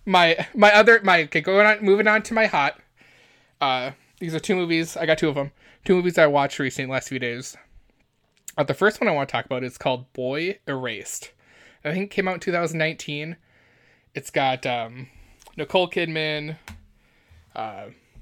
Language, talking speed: English, 190 wpm